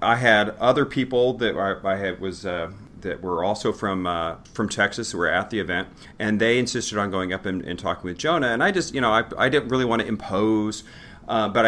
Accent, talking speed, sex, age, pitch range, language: American, 235 wpm, male, 30-49, 95-115 Hz, English